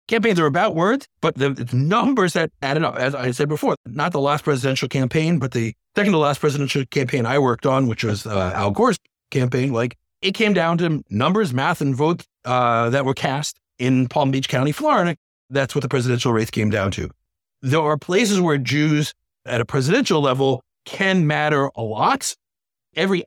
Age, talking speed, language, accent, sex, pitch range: 50-69, 195 wpm, English, American, male, 125-155 Hz